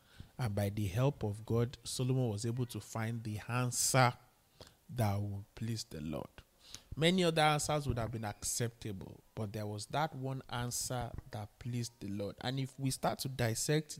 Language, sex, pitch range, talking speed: English, male, 115-165 Hz, 175 wpm